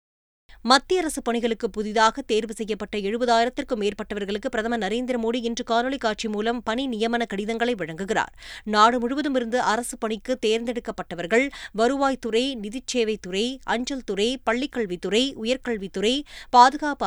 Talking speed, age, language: 115 wpm, 20-39, Tamil